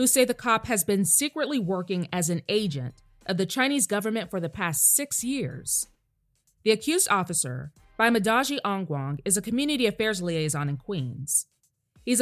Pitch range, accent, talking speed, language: 155-240 Hz, American, 160 wpm, English